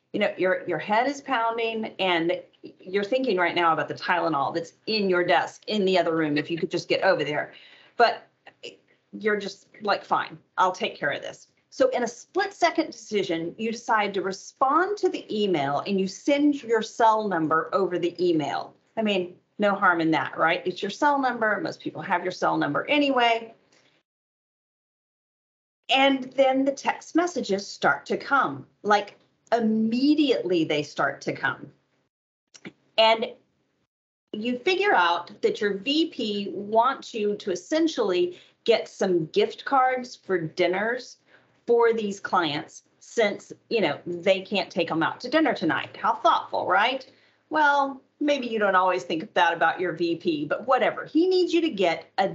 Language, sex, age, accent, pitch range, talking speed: English, female, 40-59, American, 180-270 Hz, 165 wpm